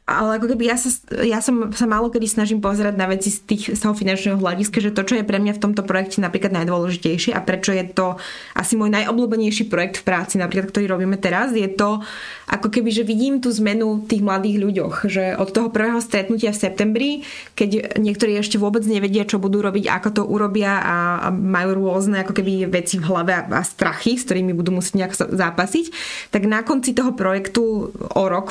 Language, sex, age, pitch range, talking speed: Slovak, female, 20-39, 190-220 Hz, 205 wpm